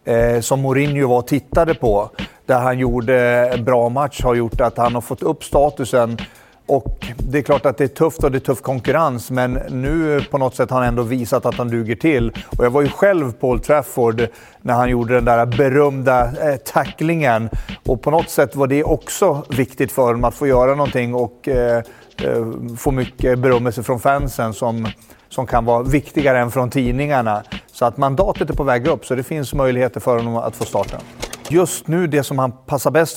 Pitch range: 120-145 Hz